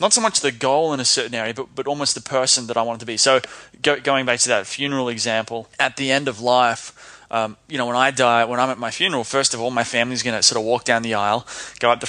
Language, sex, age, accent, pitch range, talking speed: English, male, 20-39, Australian, 115-145 Hz, 295 wpm